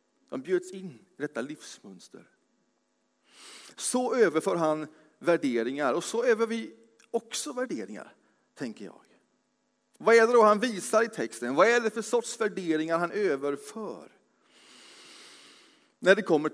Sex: male